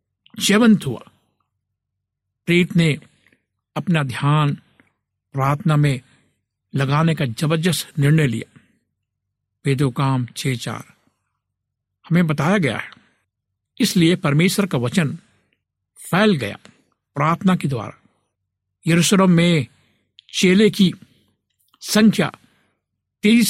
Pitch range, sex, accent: 115-165 Hz, male, native